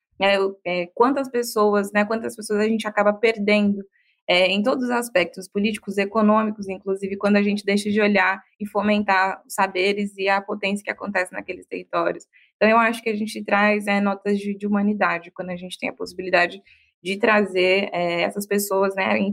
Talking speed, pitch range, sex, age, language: 185 wpm, 195-225 Hz, female, 20-39, English